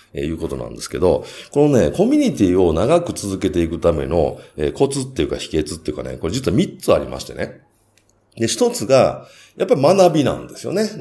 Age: 40-59